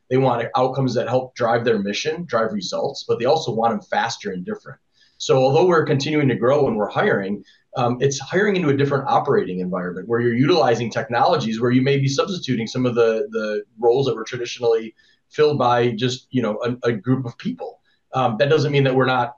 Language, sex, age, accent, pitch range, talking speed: English, male, 30-49, American, 115-145 Hz, 215 wpm